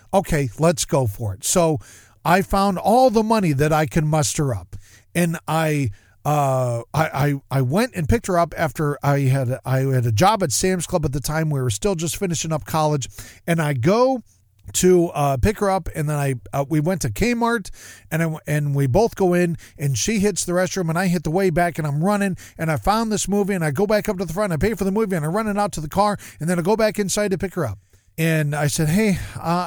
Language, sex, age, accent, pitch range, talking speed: English, male, 40-59, American, 130-190 Hz, 255 wpm